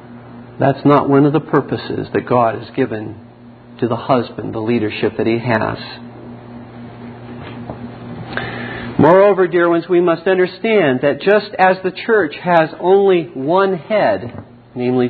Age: 50-69